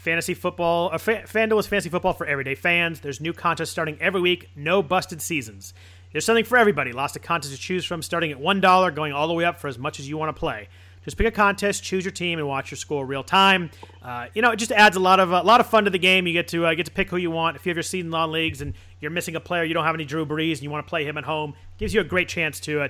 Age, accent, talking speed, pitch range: 30-49, American, 310 wpm, 145-185 Hz